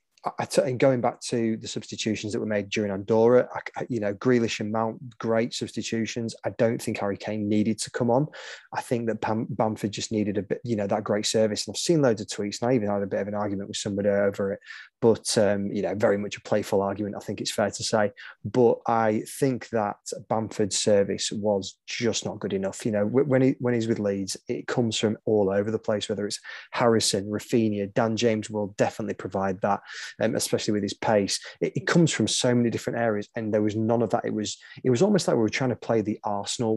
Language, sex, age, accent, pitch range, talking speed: English, male, 20-39, British, 105-120 Hz, 230 wpm